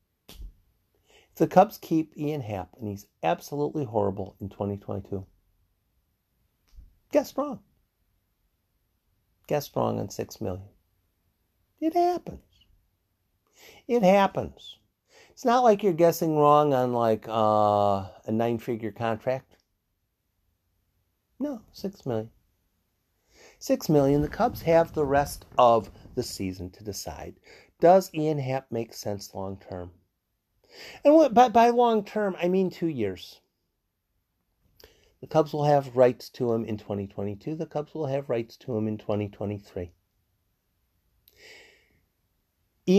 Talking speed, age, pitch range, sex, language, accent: 115 wpm, 50-69, 95-145 Hz, male, English, American